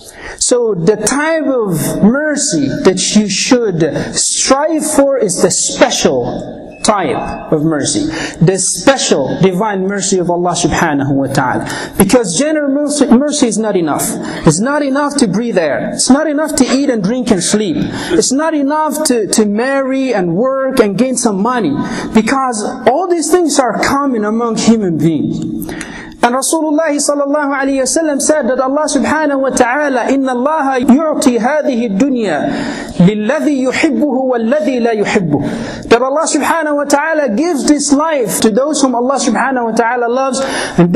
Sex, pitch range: male, 210-290 Hz